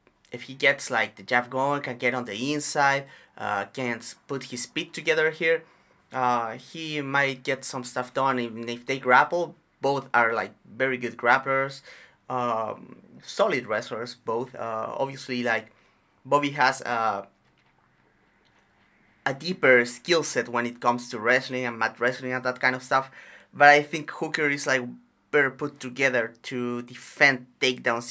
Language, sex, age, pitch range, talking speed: English, male, 30-49, 120-145 Hz, 160 wpm